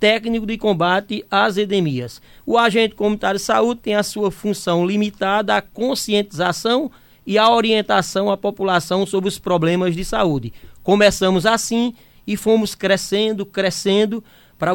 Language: Portuguese